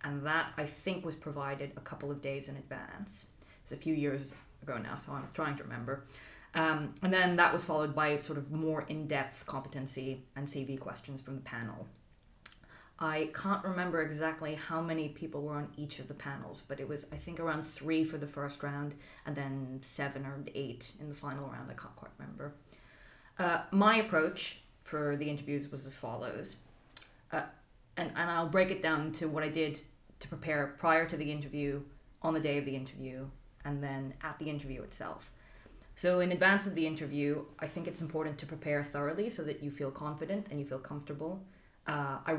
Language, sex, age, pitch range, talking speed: English, female, 20-39, 140-160 Hz, 200 wpm